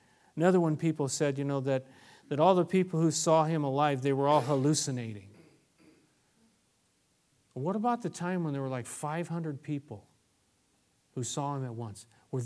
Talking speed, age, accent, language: 170 wpm, 40-59, American, English